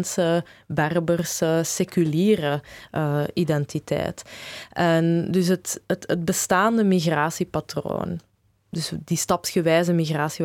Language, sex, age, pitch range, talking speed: Dutch, female, 20-39, 160-190 Hz, 85 wpm